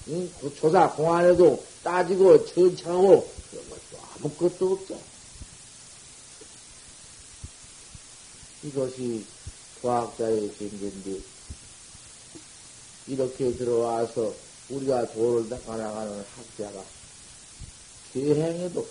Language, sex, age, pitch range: Korean, male, 50-69, 120-180 Hz